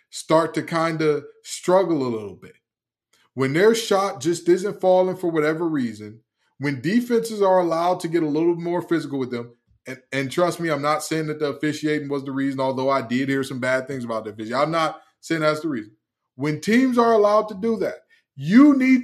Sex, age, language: male, 20-39, English